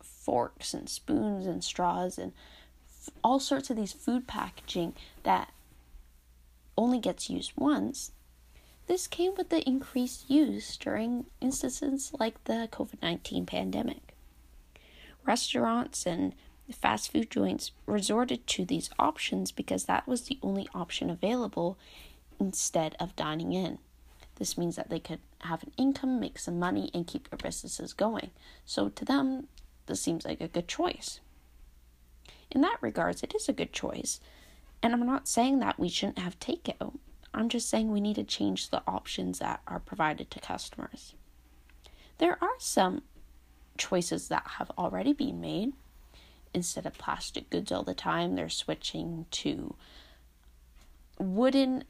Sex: female